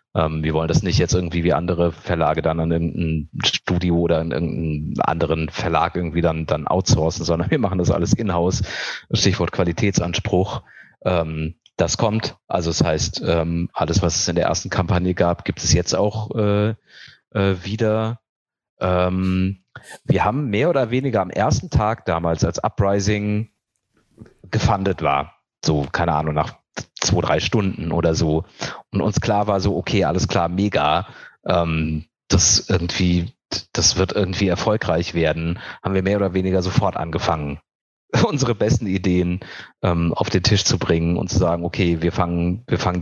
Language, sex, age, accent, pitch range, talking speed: German, male, 30-49, German, 85-100 Hz, 160 wpm